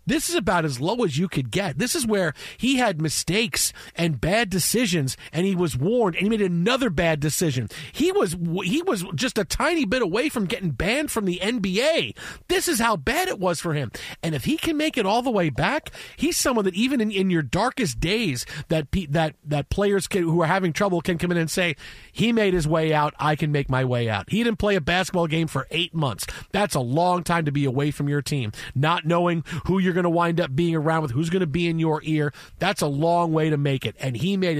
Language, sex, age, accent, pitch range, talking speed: English, male, 40-59, American, 150-190 Hz, 250 wpm